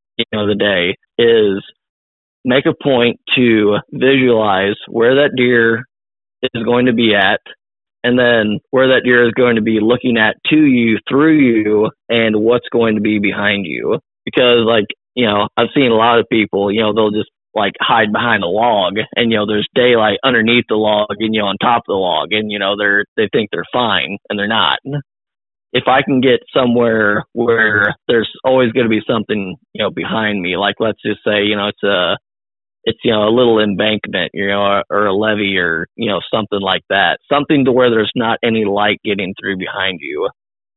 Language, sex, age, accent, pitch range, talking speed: English, male, 20-39, American, 105-125 Hz, 205 wpm